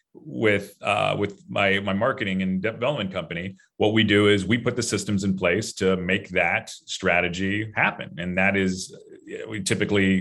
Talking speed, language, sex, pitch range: 170 wpm, English, male, 90-105 Hz